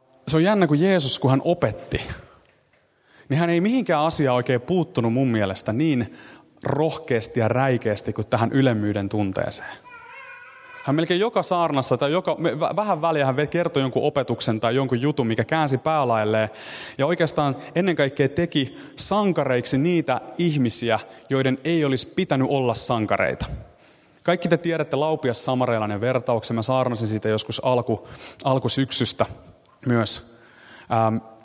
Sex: male